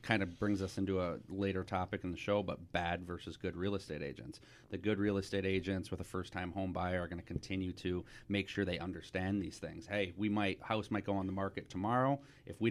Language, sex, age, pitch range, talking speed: English, male, 30-49, 95-105 Hz, 245 wpm